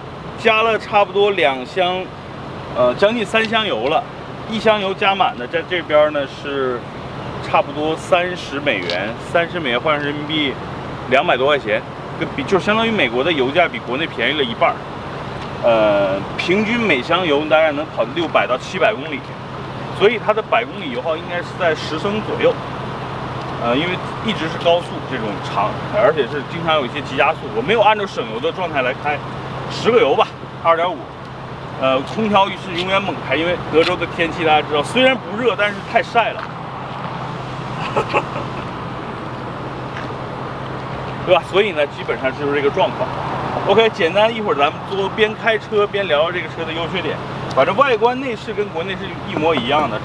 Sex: male